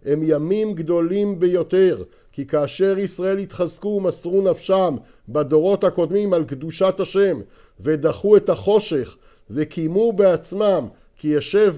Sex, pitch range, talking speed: male, 155-205 Hz, 110 wpm